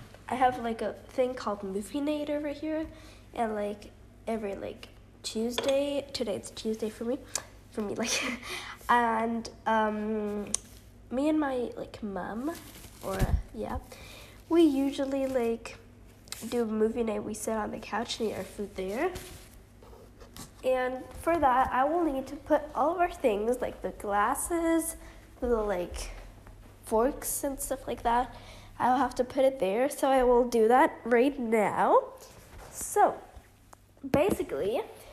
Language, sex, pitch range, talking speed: English, female, 210-285 Hz, 145 wpm